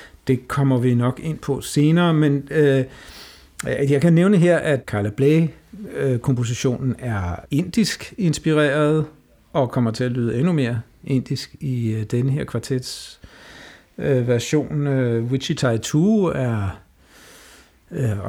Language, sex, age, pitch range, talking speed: Danish, male, 60-79, 115-150 Hz, 125 wpm